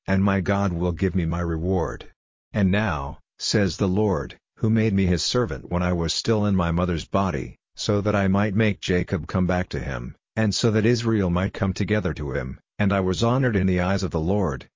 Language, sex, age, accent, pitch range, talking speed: English, male, 50-69, American, 90-105 Hz, 225 wpm